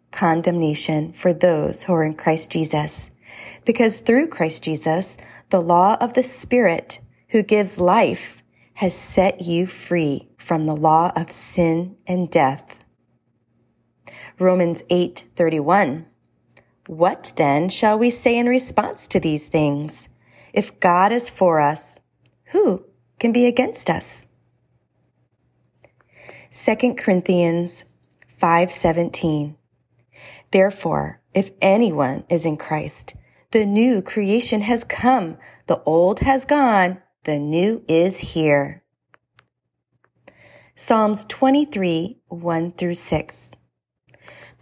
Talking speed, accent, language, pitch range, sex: 105 wpm, American, English, 160-215 Hz, female